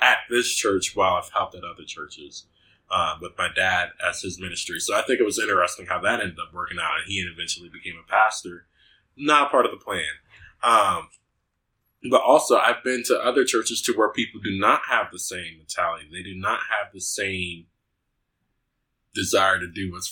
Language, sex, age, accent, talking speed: English, male, 20-39, American, 195 wpm